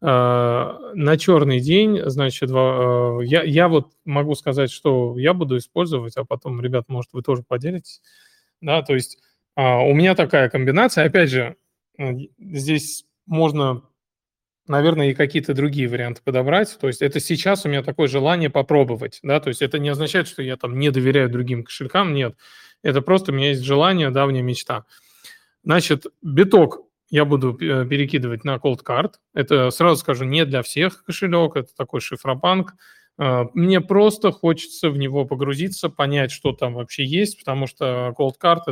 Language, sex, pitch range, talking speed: Russian, male, 130-160 Hz, 155 wpm